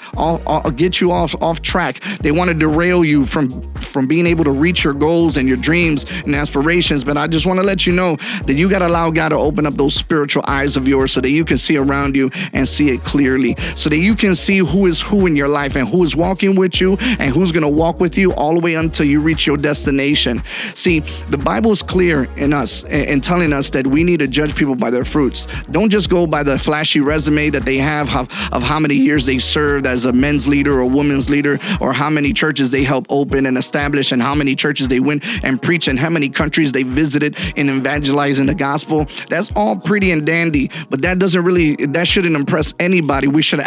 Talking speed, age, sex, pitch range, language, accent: 245 wpm, 30-49, male, 140-175 Hz, English, American